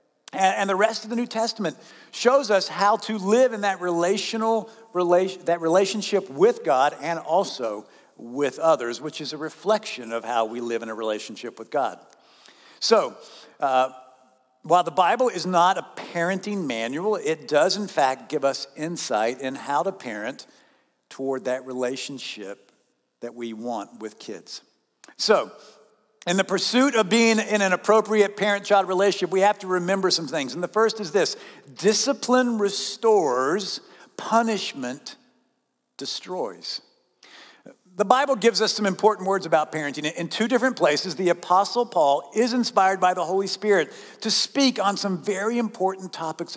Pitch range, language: 160-220 Hz, English